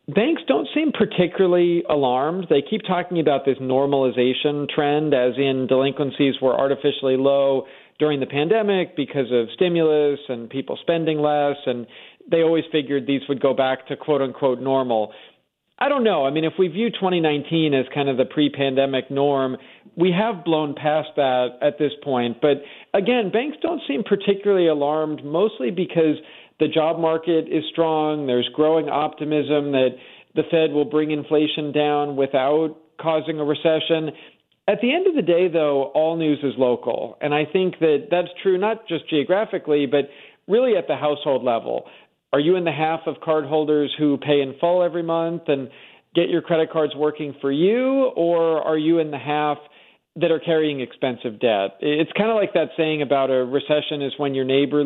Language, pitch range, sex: English, 140-165 Hz, male